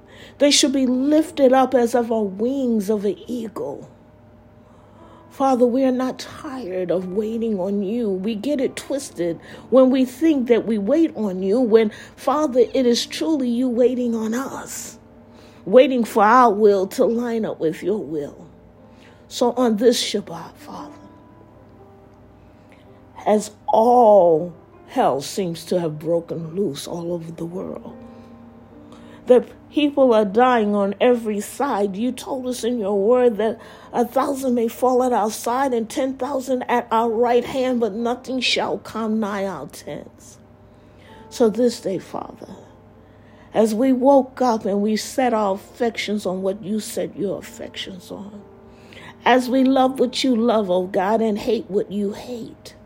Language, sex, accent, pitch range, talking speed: English, female, American, 190-250 Hz, 155 wpm